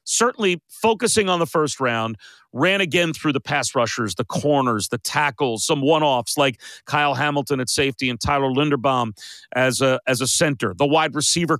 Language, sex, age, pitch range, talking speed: English, male, 40-59, 135-195 Hz, 175 wpm